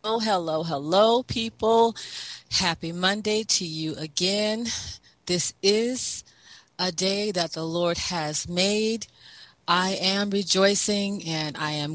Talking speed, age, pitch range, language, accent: 120 wpm, 40-59, 150-185 Hz, English, American